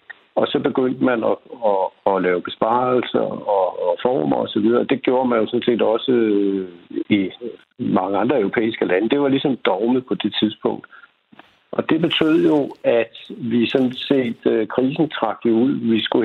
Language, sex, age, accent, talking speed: Danish, male, 60-79, native, 170 wpm